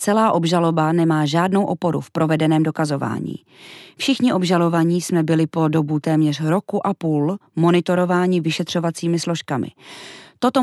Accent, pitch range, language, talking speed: native, 160-190 Hz, Czech, 125 wpm